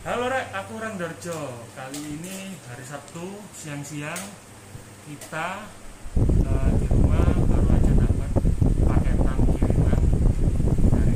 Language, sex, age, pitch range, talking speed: Indonesian, male, 30-49, 100-140 Hz, 110 wpm